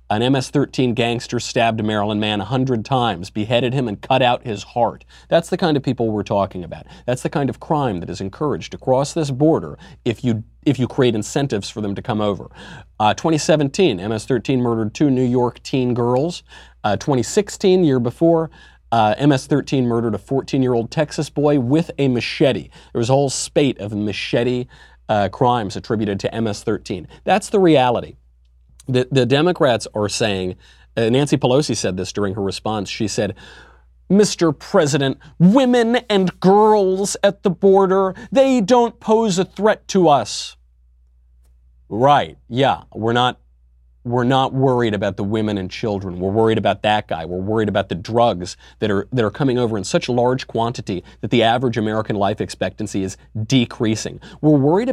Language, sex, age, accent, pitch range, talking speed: English, male, 40-59, American, 105-145 Hz, 175 wpm